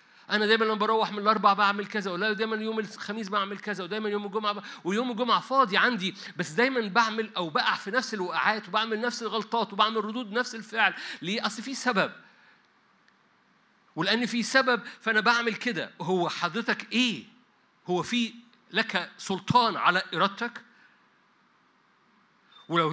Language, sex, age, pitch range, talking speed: Arabic, male, 50-69, 200-240 Hz, 150 wpm